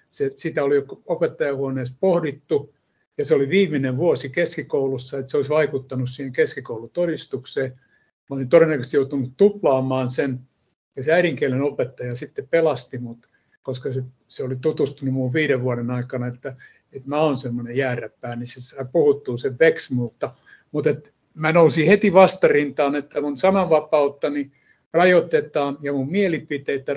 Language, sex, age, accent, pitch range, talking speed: Finnish, male, 60-79, native, 130-160 Hz, 140 wpm